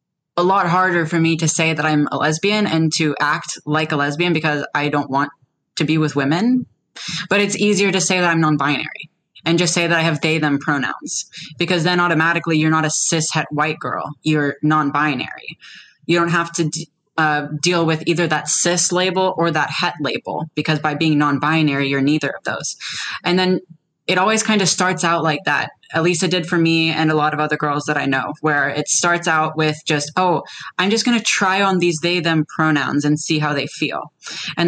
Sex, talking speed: female, 215 wpm